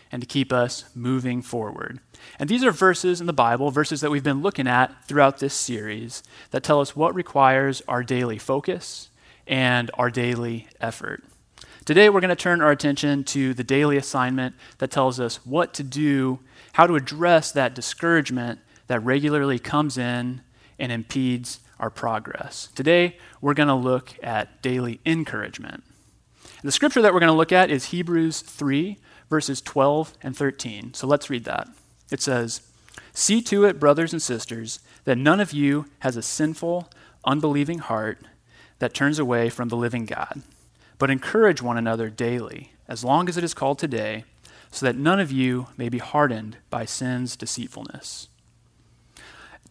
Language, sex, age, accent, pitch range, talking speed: English, male, 30-49, American, 125-155 Hz, 165 wpm